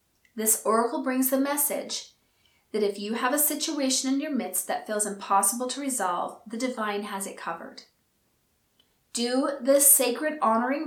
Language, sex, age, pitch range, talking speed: English, female, 30-49, 210-270 Hz, 155 wpm